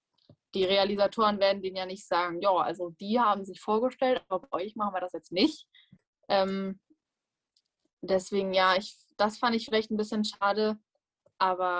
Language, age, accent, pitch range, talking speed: German, 10-29, German, 185-220 Hz, 170 wpm